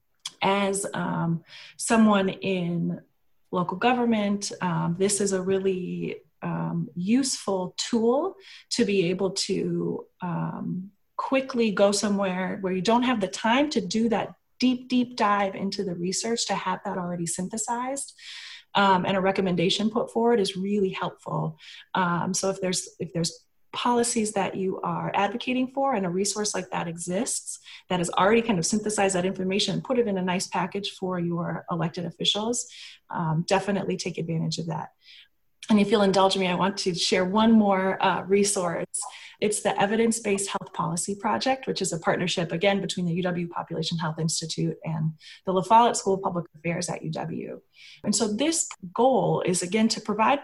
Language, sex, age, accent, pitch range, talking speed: English, female, 30-49, American, 180-215 Hz, 170 wpm